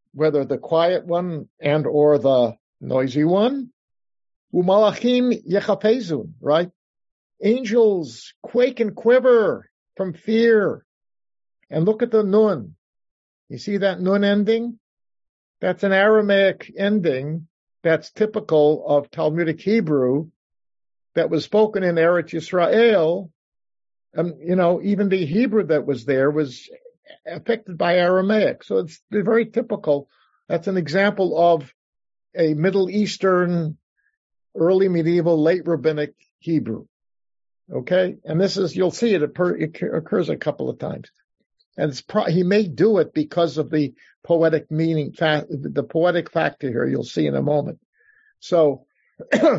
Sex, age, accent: male, 50-69, American